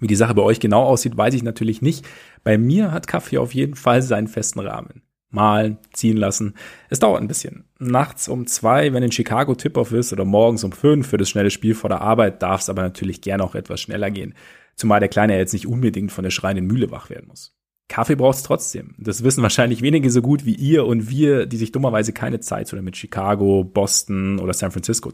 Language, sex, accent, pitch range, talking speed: German, male, German, 105-135 Hz, 225 wpm